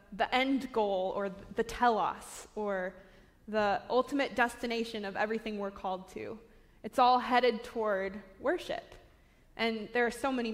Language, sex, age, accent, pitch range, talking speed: English, female, 20-39, American, 210-265 Hz, 140 wpm